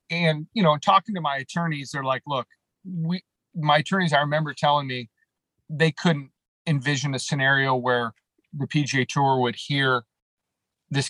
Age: 40-59